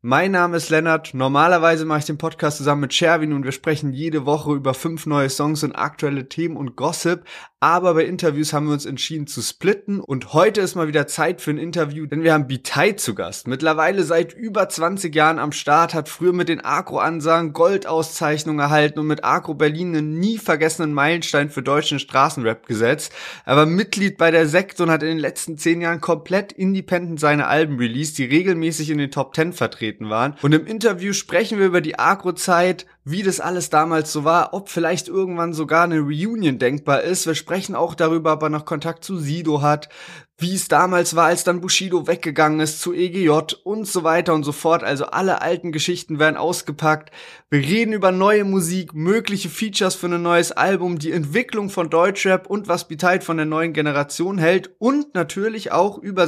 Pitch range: 150-180 Hz